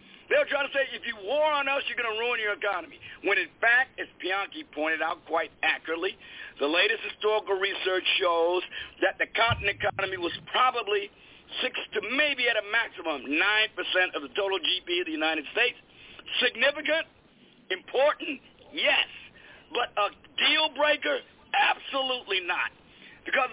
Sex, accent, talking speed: male, American, 155 wpm